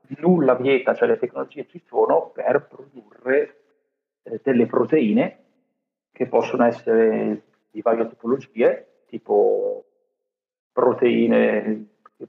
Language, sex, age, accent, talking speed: Italian, male, 40-59, native, 105 wpm